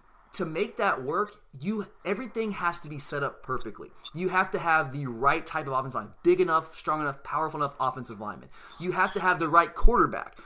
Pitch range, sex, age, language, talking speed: 150-195 Hz, male, 20-39, English, 210 wpm